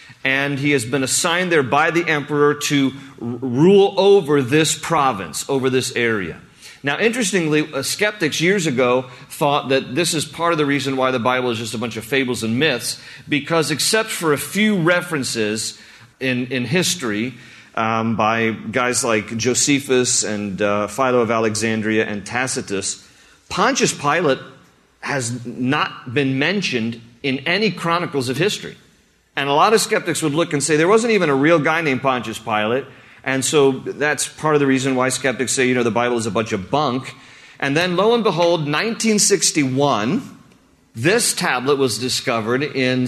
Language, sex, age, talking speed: English, male, 40-59, 170 wpm